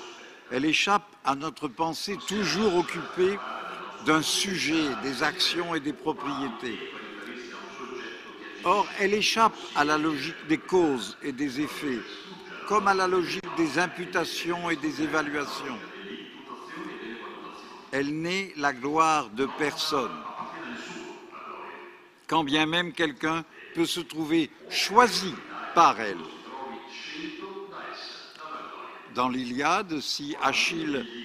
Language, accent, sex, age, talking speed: Italian, French, male, 60-79, 105 wpm